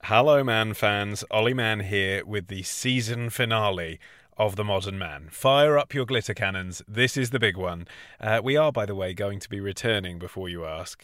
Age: 30-49